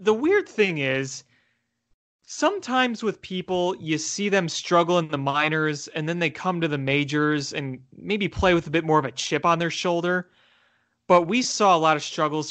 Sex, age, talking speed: male, 30-49, 195 wpm